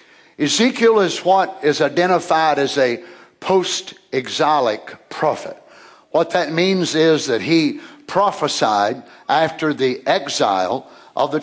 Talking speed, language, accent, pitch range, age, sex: 110 wpm, English, American, 155-210 Hz, 60-79, male